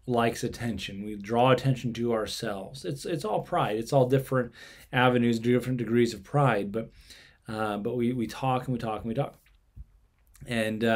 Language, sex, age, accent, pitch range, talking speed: English, male, 30-49, American, 110-140 Hz, 175 wpm